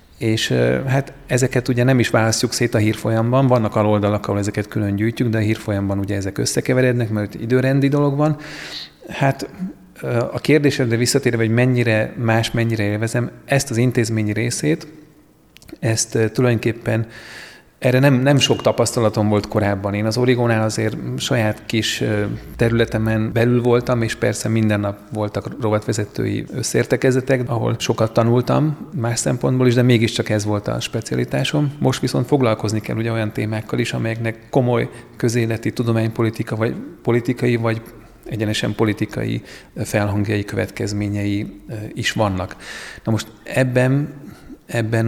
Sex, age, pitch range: male, 40-59, 105-125 Hz